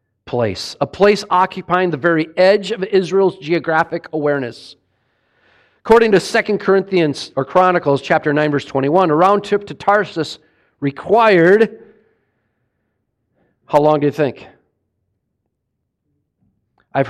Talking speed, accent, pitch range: 115 wpm, American, 115-180 Hz